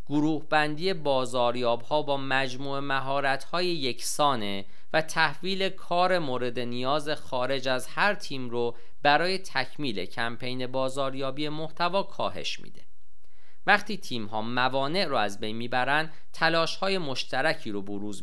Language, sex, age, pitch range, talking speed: Persian, male, 40-59, 120-155 Hz, 130 wpm